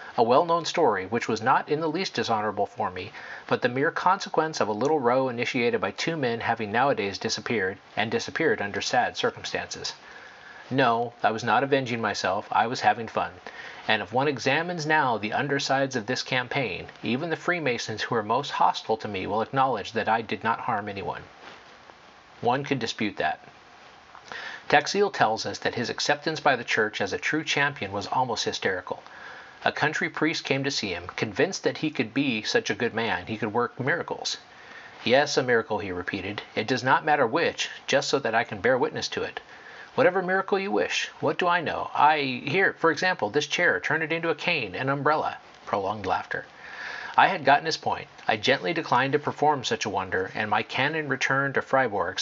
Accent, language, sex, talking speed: American, English, male, 195 wpm